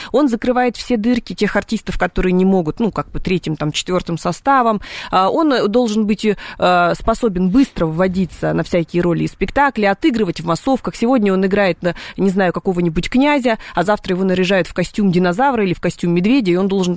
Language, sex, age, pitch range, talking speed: Russian, female, 30-49, 175-230 Hz, 185 wpm